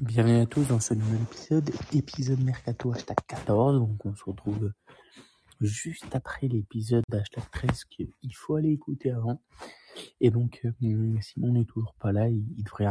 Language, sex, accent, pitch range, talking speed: French, male, French, 110-130 Hz, 160 wpm